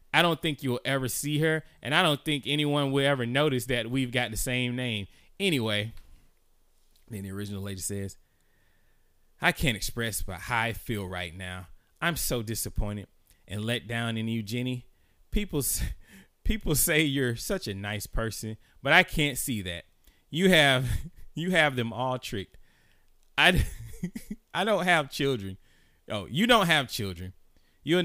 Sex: male